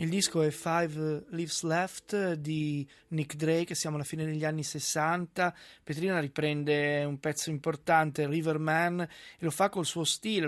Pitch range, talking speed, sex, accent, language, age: 150-180 Hz, 155 wpm, male, native, Italian, 20-39